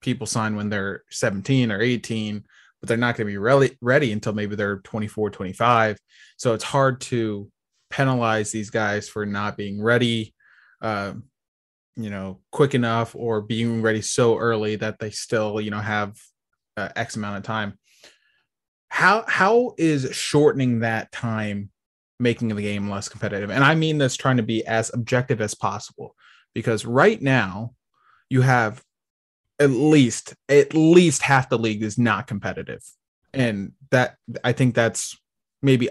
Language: English